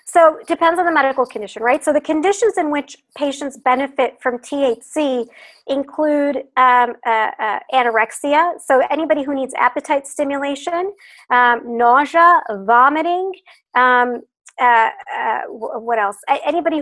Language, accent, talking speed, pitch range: English, American, 130 wpm, 245-315 Hz